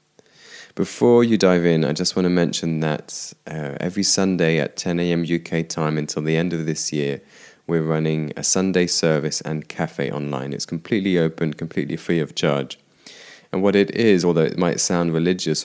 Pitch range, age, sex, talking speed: 75-90 Hz, 20-39, male, 185 wpm